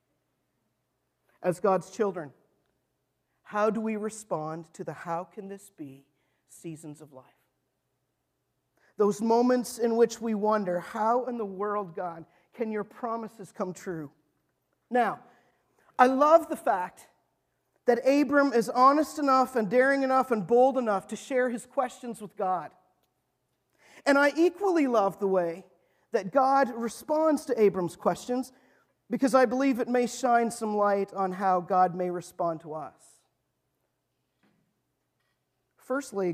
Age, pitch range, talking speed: 50-69, 195-275 Hz, 135 wpm